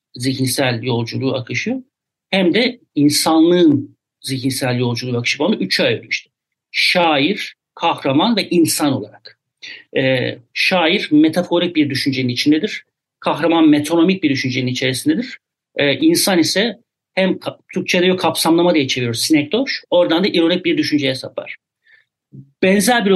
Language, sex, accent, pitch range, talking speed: Turkish, male, native, 135-175 Hz, 120 wpm